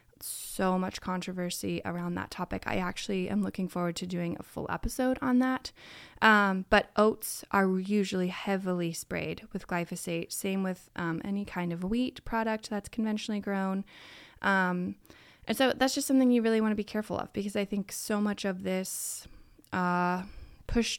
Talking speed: 170 wpm